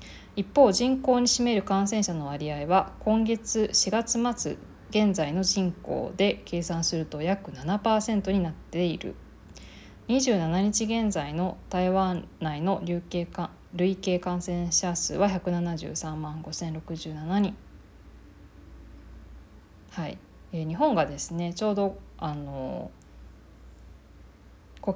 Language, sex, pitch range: Japanese, female, 150-195 Hz